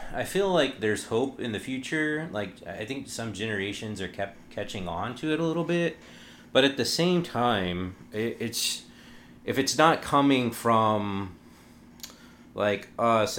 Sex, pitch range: male, 95-115 Hz